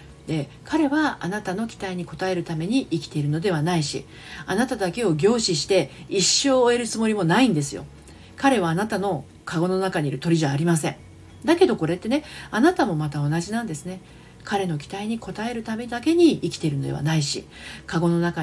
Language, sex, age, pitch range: Japanese, female, 40-59, 155-230 Hz